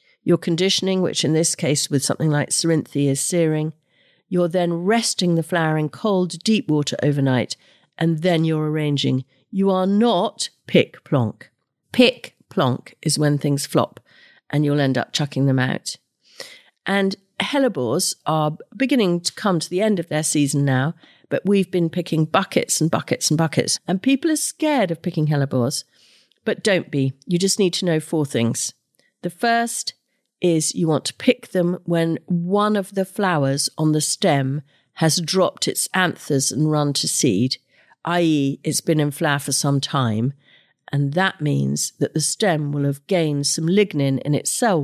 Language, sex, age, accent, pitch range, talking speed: English, female, 50-69, British, 140-185 Hz, 175 wpm